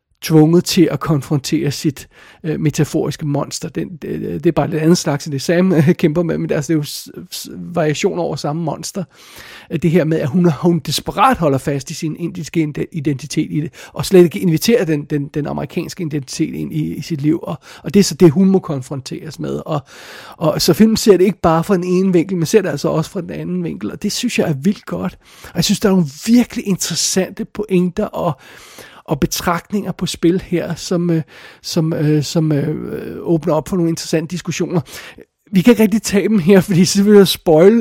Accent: native